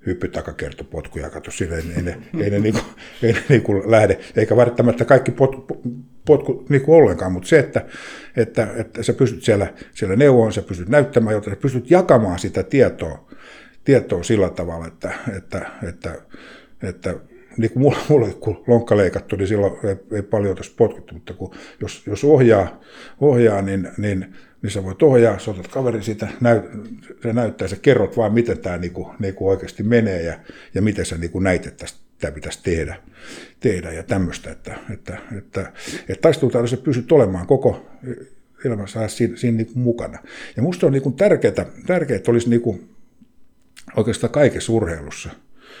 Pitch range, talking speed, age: 95-120 Hz, 170 wpm, 60-79